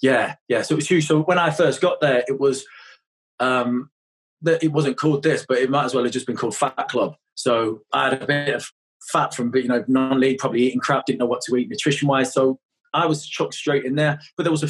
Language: English